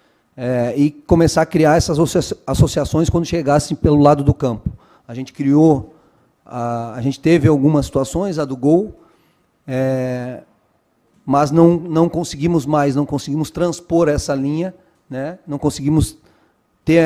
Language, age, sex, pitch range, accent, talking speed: Portuguese, 30-49, male, 145-180 Hz, Brazilian, 140 wpm